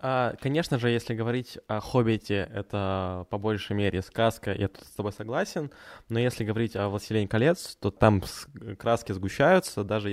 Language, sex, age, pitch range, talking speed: Ukrainian, male, 20-39, 100-125 Hz, 160 wpm